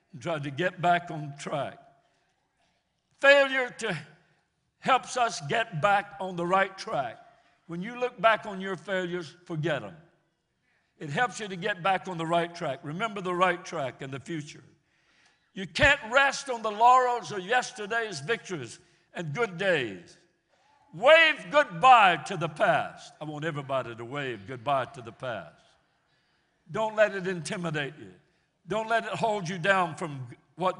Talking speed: 160 wpm